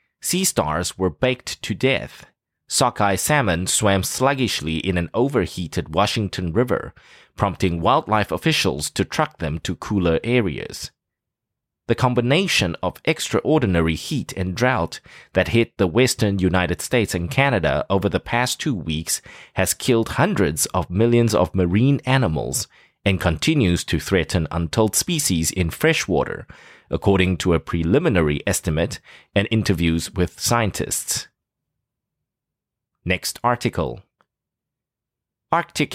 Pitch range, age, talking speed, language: 90-120 Hz, 30-49, 120 wpm, English